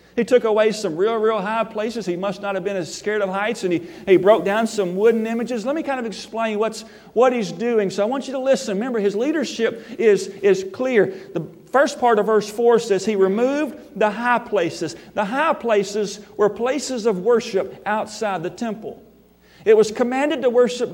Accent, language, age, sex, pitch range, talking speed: American, English, 40-59, male, 190-235 Hz, 210 wpm